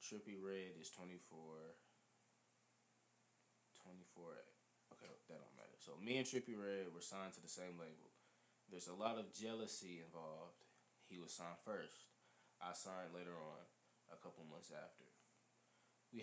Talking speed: 150 wpm